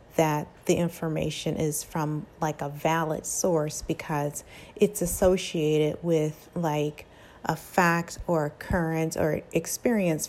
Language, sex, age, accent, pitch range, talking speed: English, female, 30-49, American, 160-185 Hz, 120 wpm